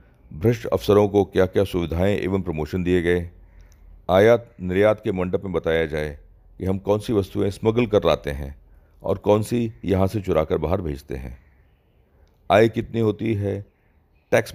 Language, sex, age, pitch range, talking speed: Hindi, male, 40-59, 75-110 Hz, 165 wpm